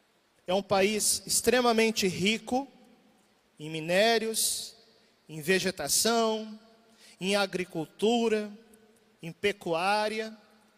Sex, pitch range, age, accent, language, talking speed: male, 215-265 Hz, 40-59, Brazilian, Portuguese, 70 wpm